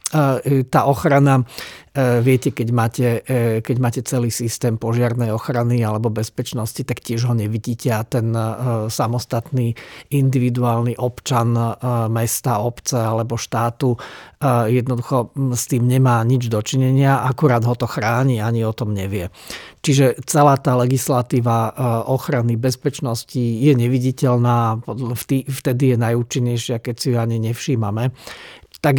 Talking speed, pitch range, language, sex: 120 wpm, 115-130 Hz, Slovak, male